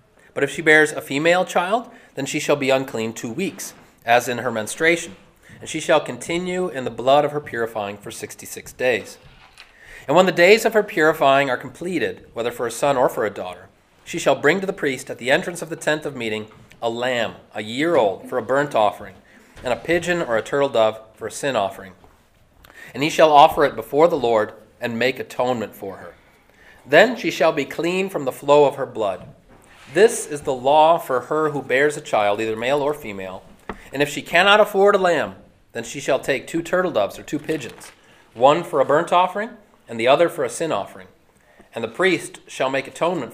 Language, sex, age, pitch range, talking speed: English, male, 30-49, 125-180 Hz, 215 wpm